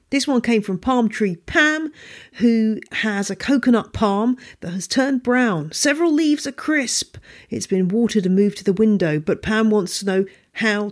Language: English